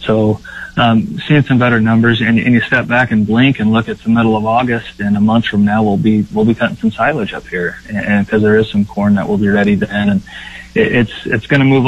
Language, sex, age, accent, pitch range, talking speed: English, male, 30-49, American, 105-115 Hz, 265 wpm